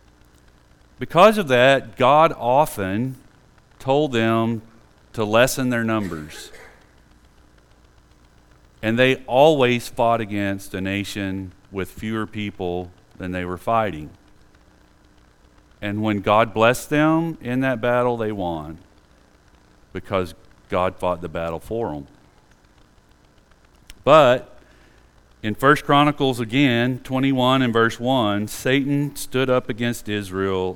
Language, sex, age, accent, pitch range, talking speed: English, male, 40-59, American, 75-125 Hz, 110 wpm